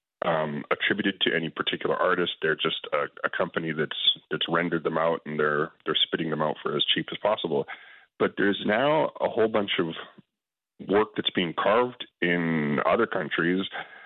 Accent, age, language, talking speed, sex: American, 30-49, English, 175 wpm, male